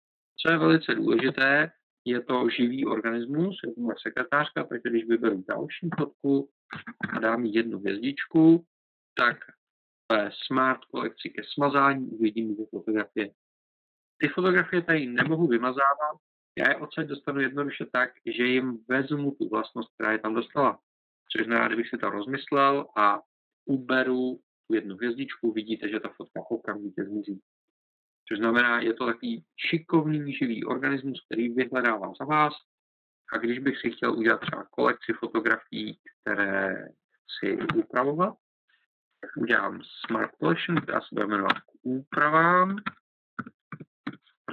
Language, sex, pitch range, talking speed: Czech, male, 115-155 Hz, 135 wpm